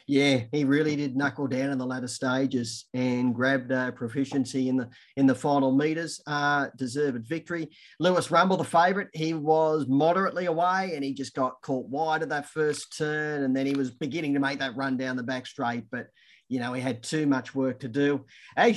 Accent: Australian